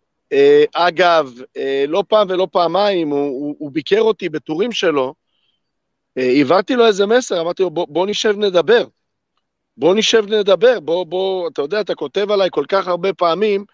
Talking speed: 165 wpm